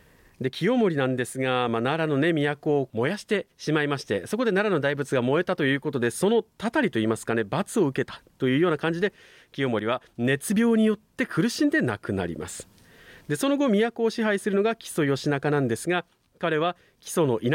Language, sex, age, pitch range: Japanese, male, 40-59, 120-200 Hz